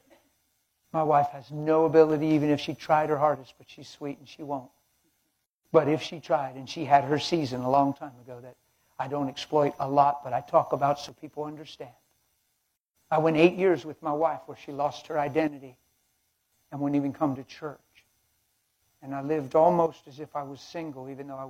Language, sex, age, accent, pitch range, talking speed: English, male, 60-79, American, 105-150 Hz, 205 wpm